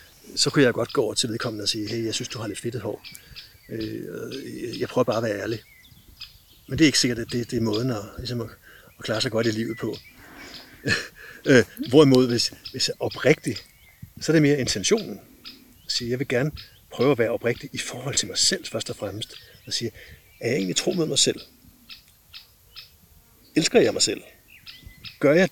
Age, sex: 60-79, male